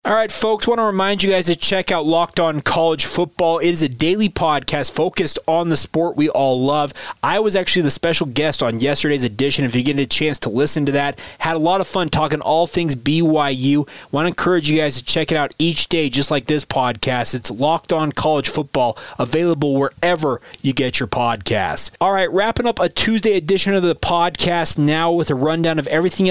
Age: 30-49